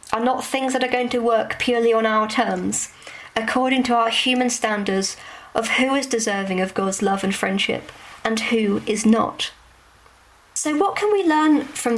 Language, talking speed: English, 180 wpm